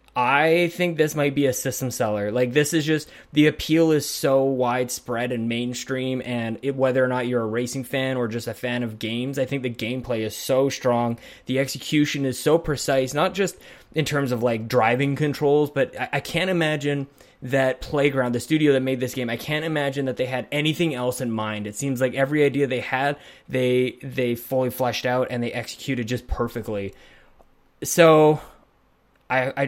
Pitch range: 125-145 Hz